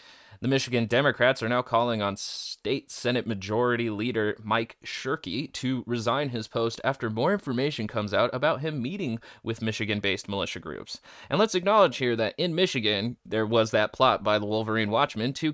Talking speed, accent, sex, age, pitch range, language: 175 wpm, American, male, 20-39, 110-130 Hz, English